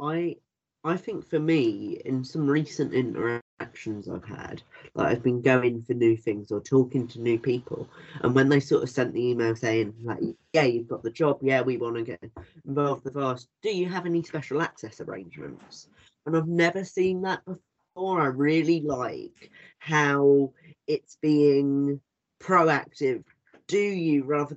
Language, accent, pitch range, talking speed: English, British, 125-155 Hz, 170 wpm